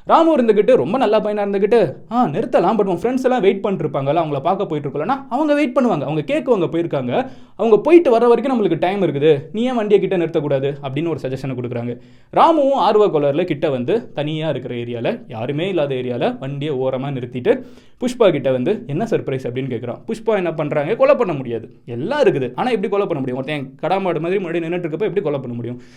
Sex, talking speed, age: male, 190 wpm, 20-39